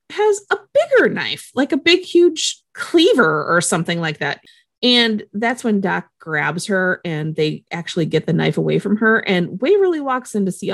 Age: 30-49